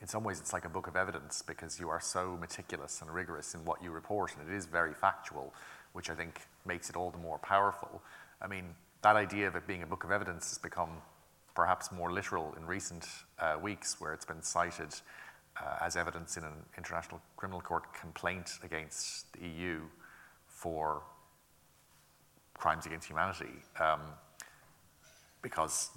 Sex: male